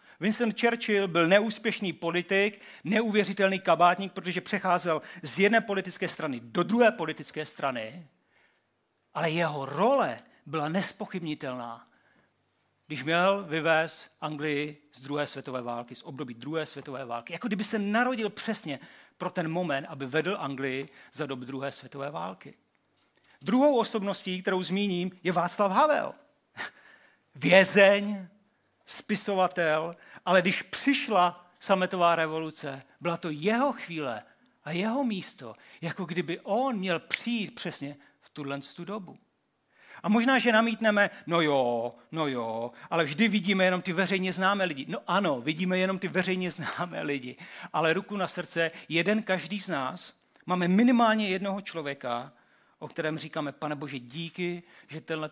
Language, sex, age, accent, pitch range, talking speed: Czech, male, 40-59, native, 150-200 Hz, 135 wpm